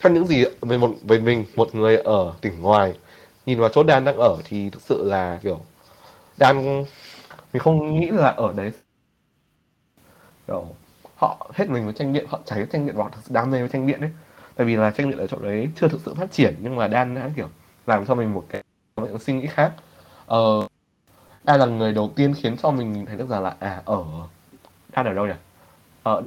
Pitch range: 105-140 Hz